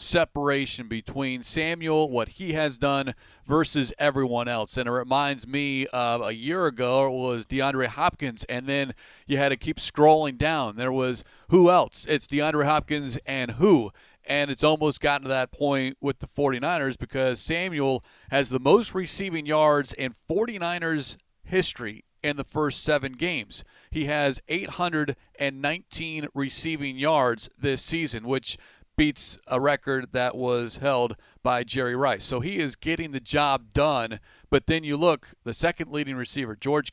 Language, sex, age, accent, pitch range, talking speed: English, male, 40-59, American, 125-155 Hz, 160 wpm